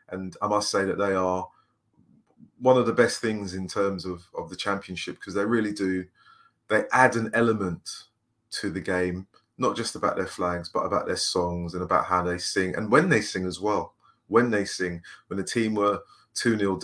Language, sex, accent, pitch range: English, male, British, 90-120 Hz